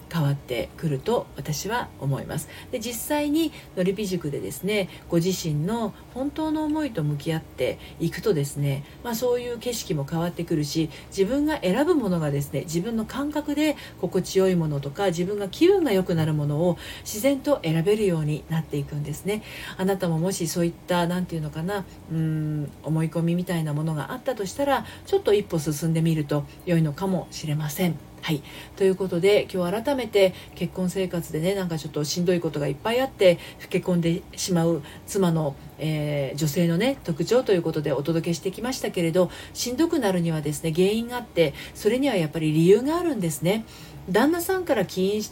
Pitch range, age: 155-215 Hz, 40-59